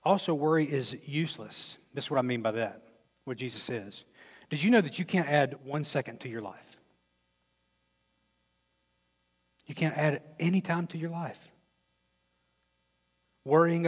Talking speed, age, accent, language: 150 wpm, 40-59, American, English